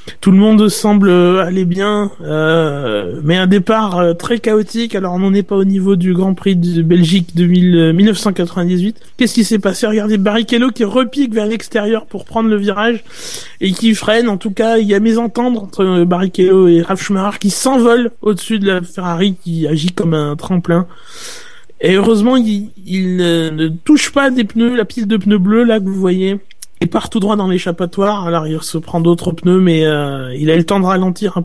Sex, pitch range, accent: male, 180-220 Hz, French